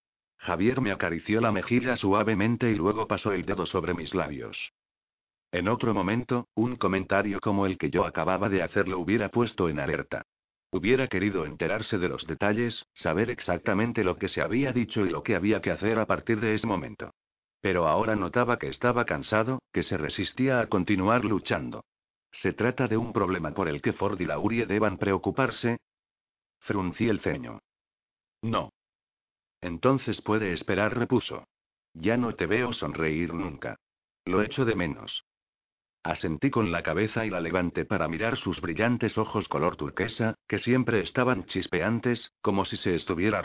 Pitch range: 95-115 Hz